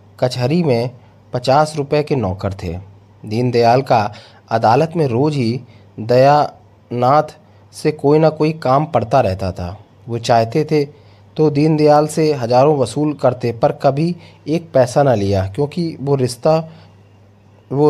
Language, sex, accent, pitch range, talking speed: Hindi, male, native, 105-150 Hz, 135 wpm